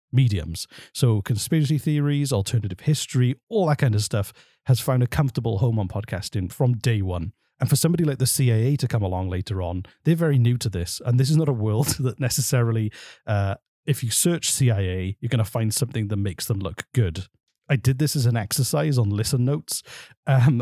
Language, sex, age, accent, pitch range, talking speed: English, male, 40-59, British, 105-140 Hz, 205 wpm